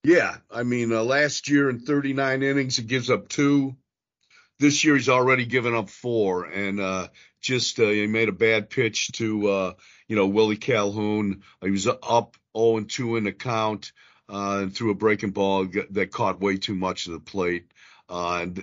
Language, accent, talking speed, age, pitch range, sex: English, American, 195 wpm, 50-69, 100-125 Hz, male